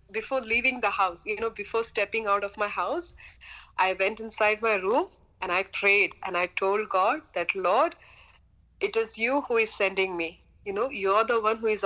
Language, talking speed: English, 200 wpm